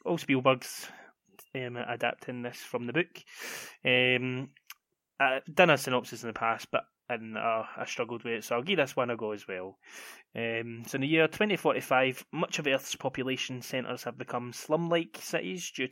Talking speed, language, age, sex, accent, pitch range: 180 wpm, English, 20-39, male, British, 125-160 Hz